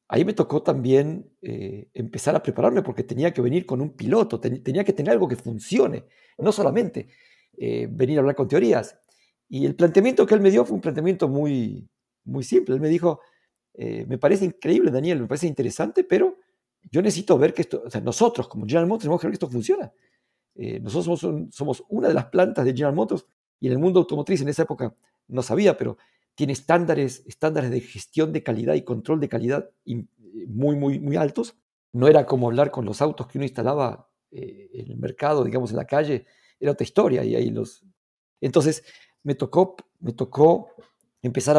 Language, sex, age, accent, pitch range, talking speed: Spanish, male, 50-69, Mexican, 130-175 Hz, 205 wpm